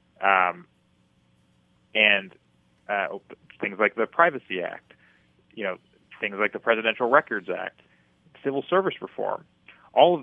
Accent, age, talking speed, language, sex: American, 30-49, 125 wpm, English, male